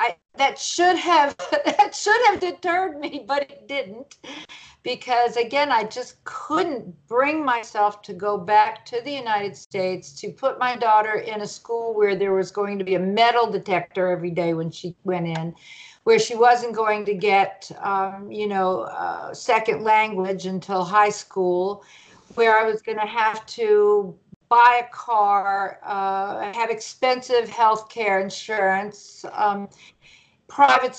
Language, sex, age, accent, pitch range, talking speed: English, female, 50-69, American, 200-275 Hz, 155 wpm